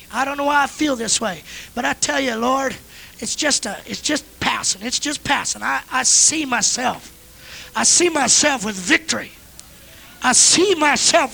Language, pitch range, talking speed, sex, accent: English, 185-260 Hz, 180 wpm, male, American